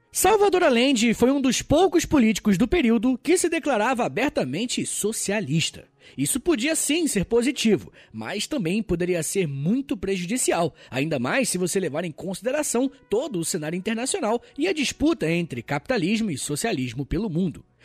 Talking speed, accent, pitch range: 150 wpm, Brazilian, 175-275 Hz